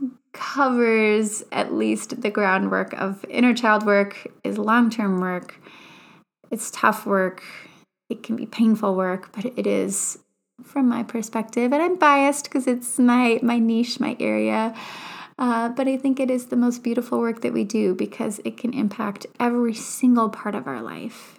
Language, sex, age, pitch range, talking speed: English, female, 20-39, 205-250 Hz, 165 wpm